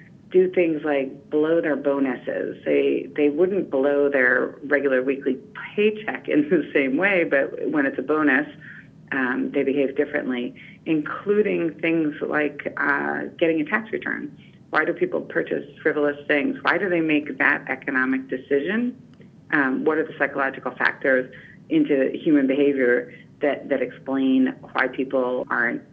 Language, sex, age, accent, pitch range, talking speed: English, female, 40-59, American, 135-165 Hz, 145 wpm